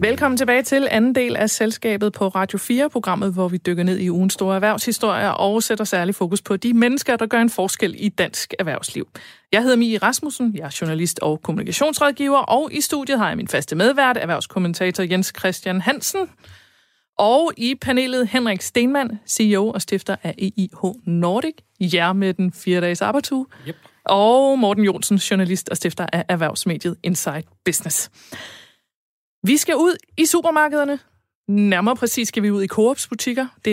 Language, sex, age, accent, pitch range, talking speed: Danish, female, 30-49, native, 185-240 Hz, 165 wpm